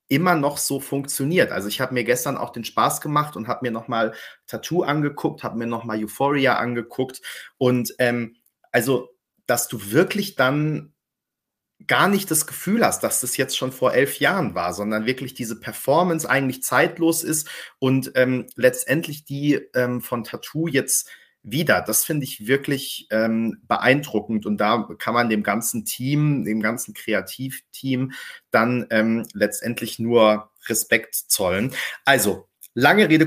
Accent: German